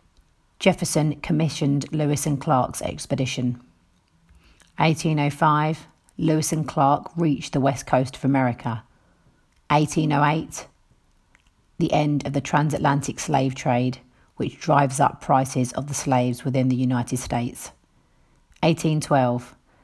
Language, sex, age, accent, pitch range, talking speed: English, female, 40-59, British, 125-150 Hz, 110 wpm